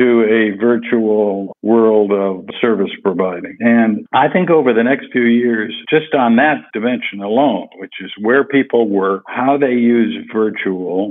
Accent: American